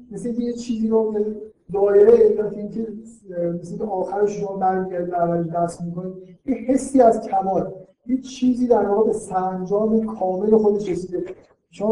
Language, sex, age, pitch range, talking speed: Persian, male, 50-69, 180-220 Hz, 115 wpm